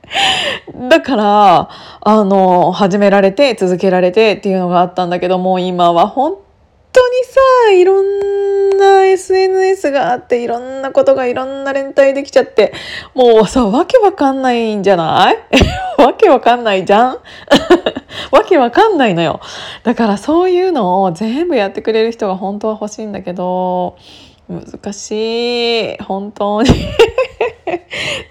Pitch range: 185-285 Hz